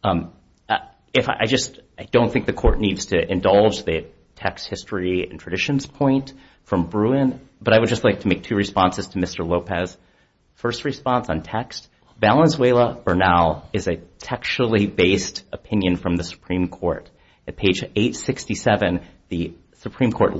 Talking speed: 160 wpm